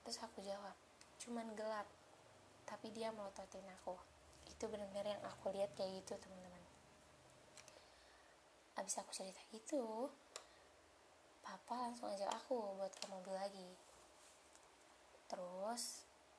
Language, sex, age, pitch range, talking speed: Indonesian, female, 20-39, 195-245 Hz, 115 wpm